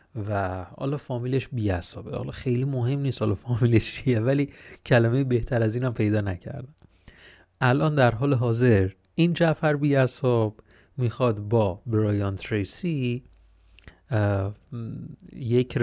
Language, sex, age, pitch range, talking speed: Persian, male, 30-49, 100-130 Hz, 115 wpm